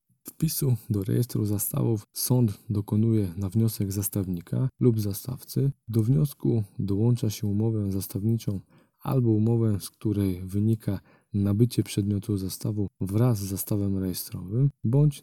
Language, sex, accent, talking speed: Polish, male, native, 120 wpm